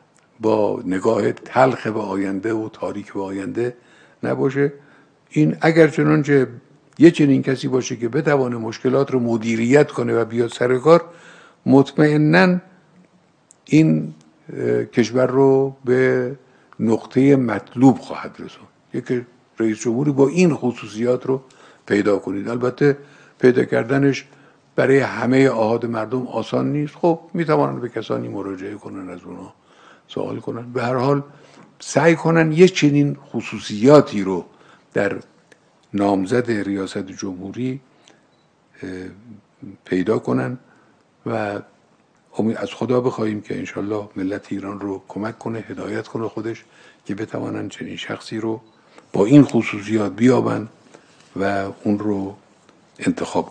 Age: 60-79